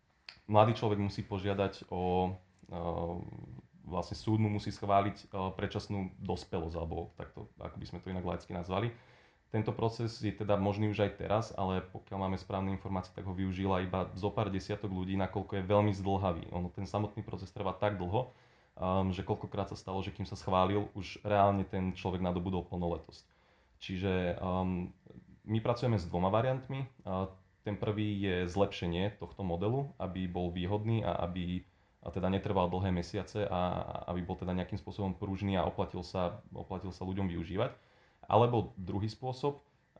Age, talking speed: 20-39, 155 wpm